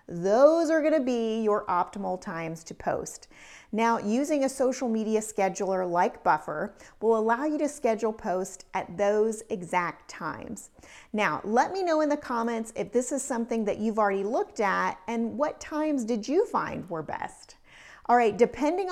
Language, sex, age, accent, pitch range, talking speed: English, female, 40-59, American, 195-275 Hz, 170 wpm